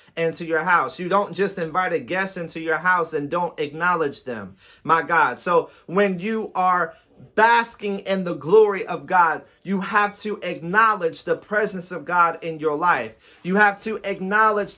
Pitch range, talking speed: 190-235 Hz, 175 wpm